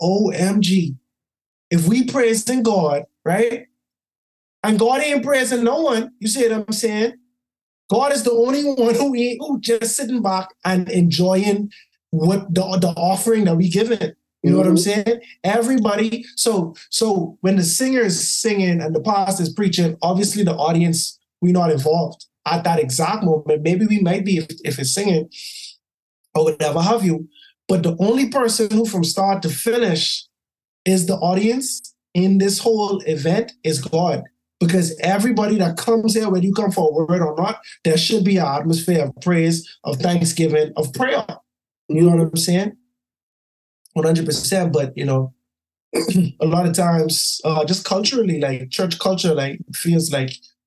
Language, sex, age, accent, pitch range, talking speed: English, male, 20-39, American, 160-220 Hz, 170 wpm